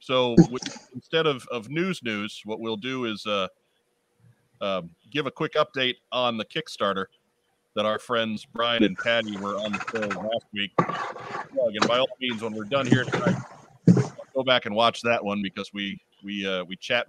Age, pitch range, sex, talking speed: 40-59, 105-135 Hz, male, 185 wpm